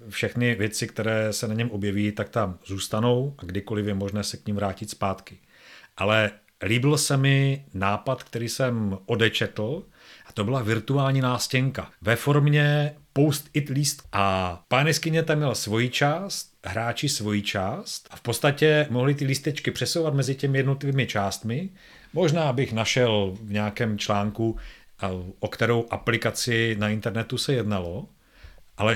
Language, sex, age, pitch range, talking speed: Czech, male, 40-59, 110-140 Hz, 145 wpm